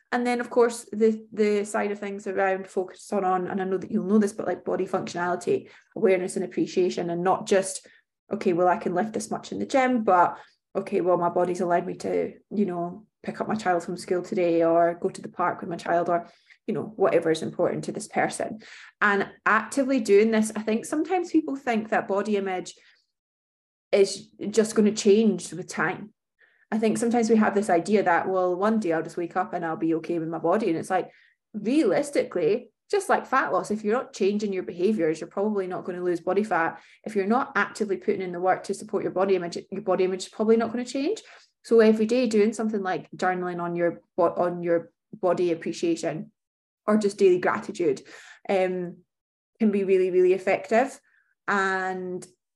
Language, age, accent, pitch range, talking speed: English, 20-39, British, 180-220 Hz, 210 wpm